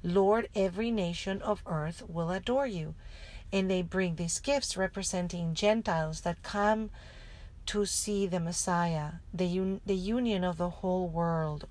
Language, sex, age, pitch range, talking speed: English, female, 40-59, 175-210 Hz, 145 wpm